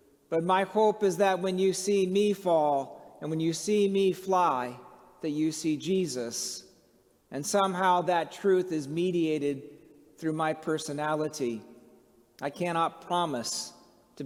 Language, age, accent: English, 50-69, American